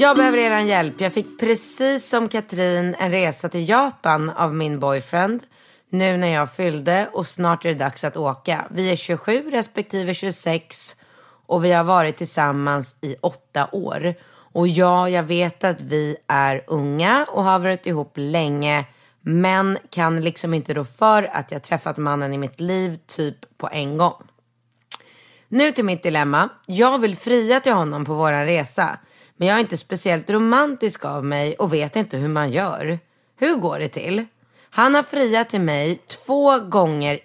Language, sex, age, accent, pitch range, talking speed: Swedish, female, 30-49, native, 145-195 Hz, 170 wpm